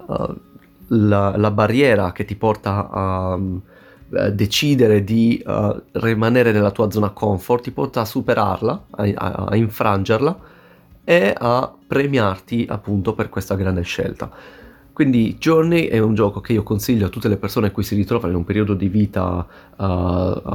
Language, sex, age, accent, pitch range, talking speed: Italian, male, 30-49, native, 95-110 Hz, 160 wpm